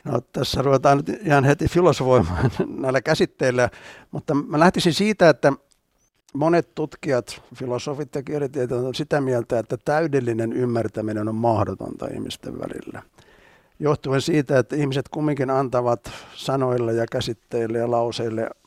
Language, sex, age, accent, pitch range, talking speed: Finnish, male, 60-79, native, 115-140 Hz, 125 wpm